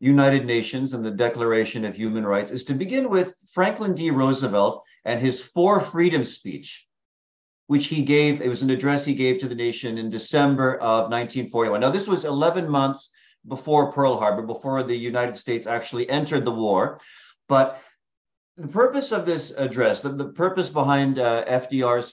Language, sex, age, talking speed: English, male, 40-59, 175 wpm